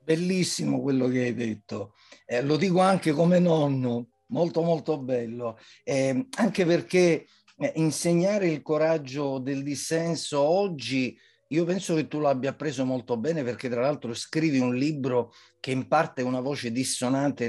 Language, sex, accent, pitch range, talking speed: Italian, male, native, 120-155 Hz, 150 wpm